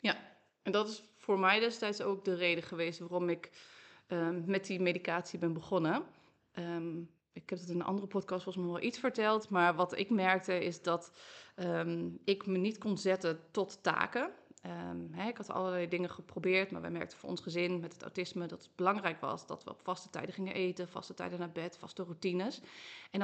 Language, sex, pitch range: Dutch, female, 175-195 Hz